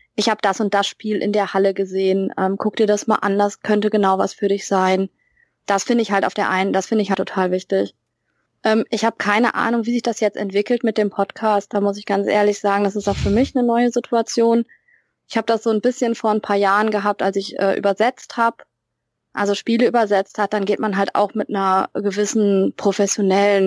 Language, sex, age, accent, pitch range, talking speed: German, female, 20-39, German, 195-215 Hz, 235 wpm